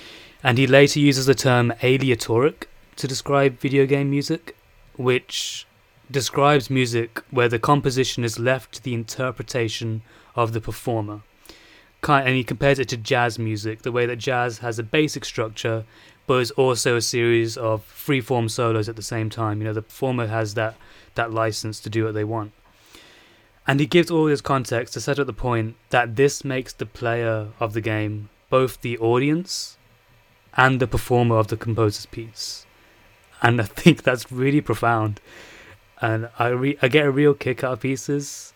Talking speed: 175 wpm